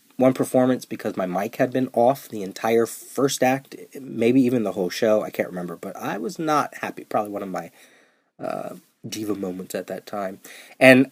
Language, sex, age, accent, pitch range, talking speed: English, male, 30-49, American, 110-145 Hz, 195 wpm